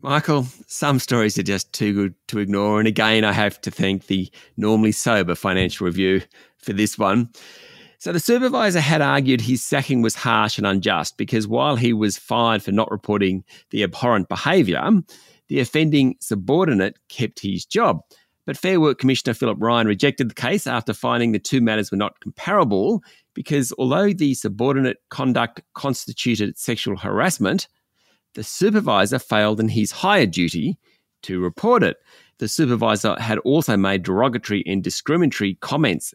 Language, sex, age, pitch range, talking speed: English, male, 40-59, 105-140 Hz, 160 wpm